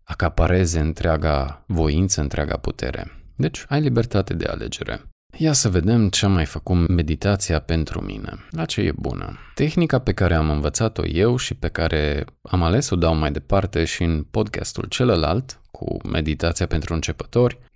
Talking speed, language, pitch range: 160 wpm, Romanian, 80-105 Hz